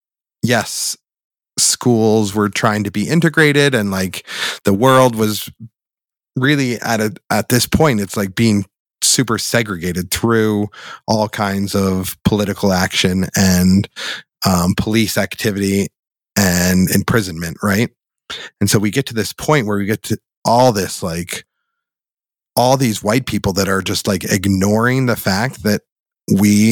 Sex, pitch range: male, 95-110 Hz